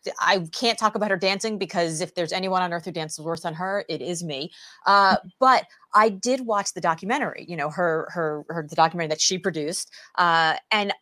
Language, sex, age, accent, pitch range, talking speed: English, female, 30-49, American, 160-215 Hz, 205 wpm